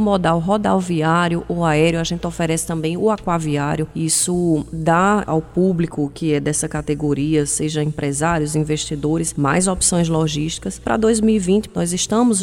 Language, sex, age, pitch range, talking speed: Portuguese, female, 20-39, 165-210 Hz, 135 wpm